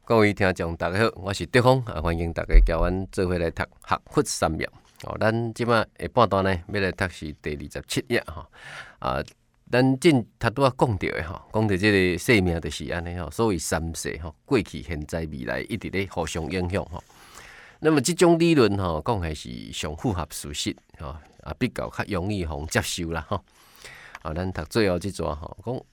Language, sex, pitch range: Chinese, male, 85-115 Hz